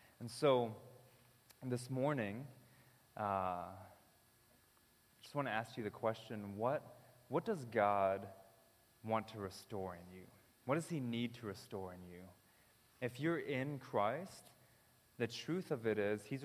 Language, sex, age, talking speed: English, male, 20-39, 145 wpm